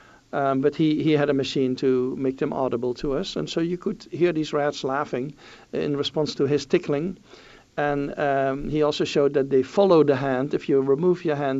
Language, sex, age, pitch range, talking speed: English, male, 60-79, 130-160 Hz, 210 wpm